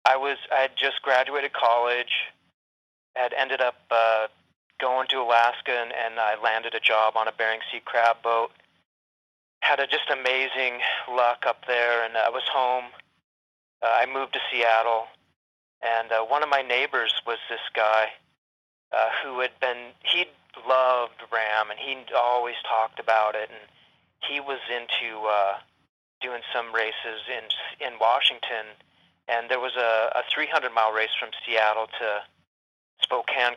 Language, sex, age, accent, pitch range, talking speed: English, male, 40-59, American, 110-125 Hz, 155 wpm